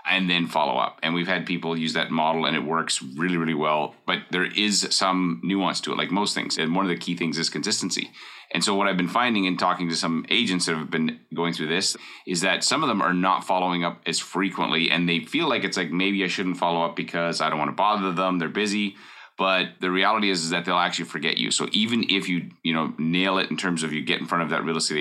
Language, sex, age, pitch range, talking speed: English, male, 30-49, 80-90 Hz, 270 wpm